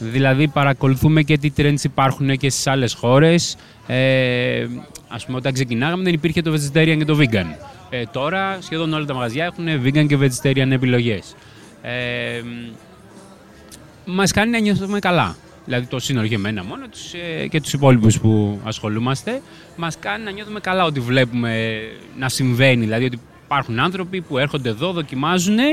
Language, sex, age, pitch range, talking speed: Greek, male, 20-39, 125-165 Hz, 160 wpm